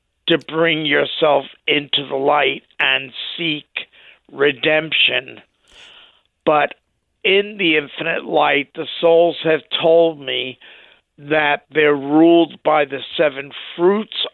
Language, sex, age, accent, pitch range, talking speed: English, male, 50-69, American, 140-170 Hz, 110 wpm